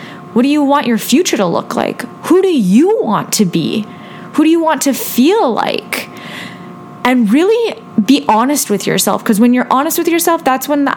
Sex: female